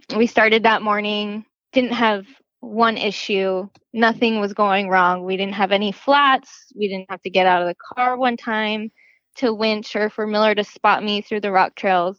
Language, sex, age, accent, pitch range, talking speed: English, female, 10-29, American, 195-230 Hz, 195 wpm